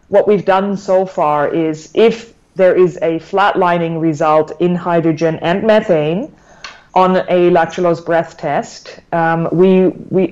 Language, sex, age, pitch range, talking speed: English, female, 30-49, 160-185 Hz, 140 wpm